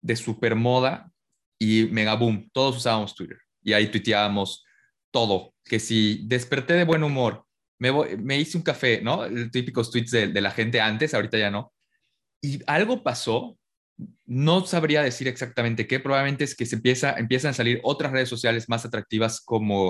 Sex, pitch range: male, 110-145 Hz